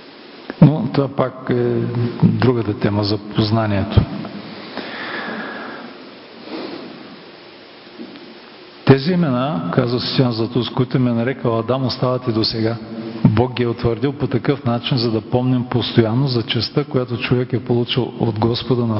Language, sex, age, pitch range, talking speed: Bulgarian, male, 40-59, 115-135 Hz, 125 wpm